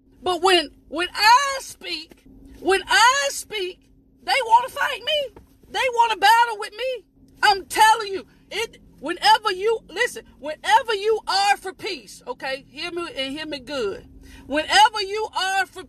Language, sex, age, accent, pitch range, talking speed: English, female, 40-59, American, 340-440 Hz, 160 wpm